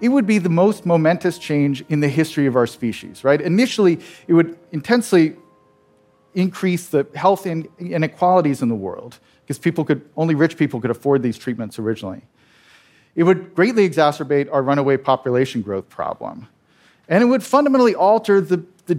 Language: English